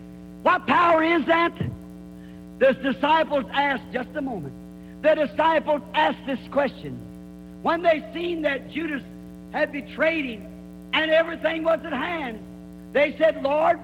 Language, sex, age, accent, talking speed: English, male, 50-69, American, 135 wpm